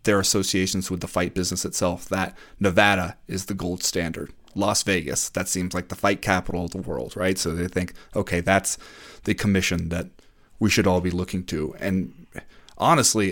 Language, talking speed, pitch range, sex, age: English, 185 wpm, 95-135 Hz, male, 30-49